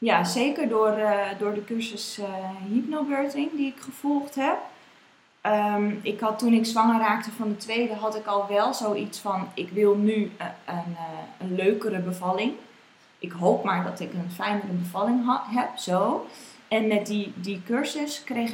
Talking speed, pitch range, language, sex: 175 wpm, 200-235 Hz, Dutch, female